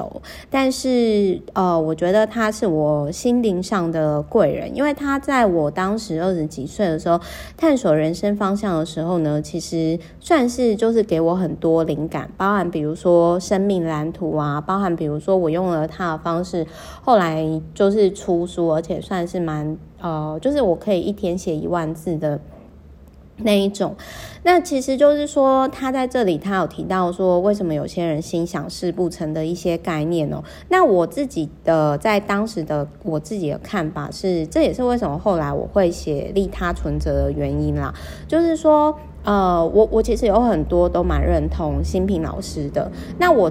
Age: 30-49